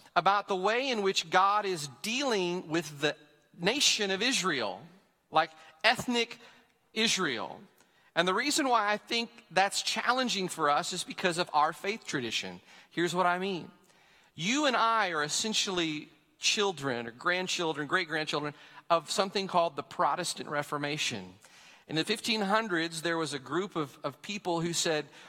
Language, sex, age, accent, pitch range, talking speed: English, male, 40-59, American, 160-210 Hz, 150 wpm